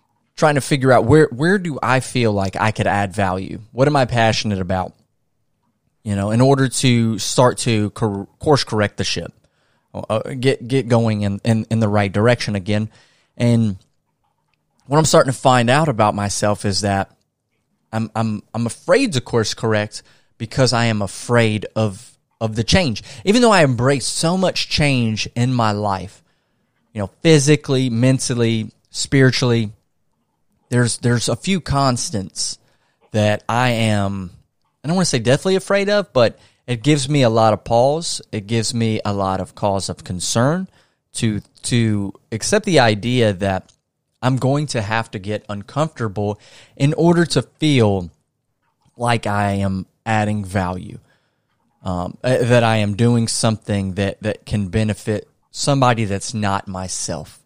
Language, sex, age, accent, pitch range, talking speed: English, male, 30-49, American, 105-130 Hz, 160 wpm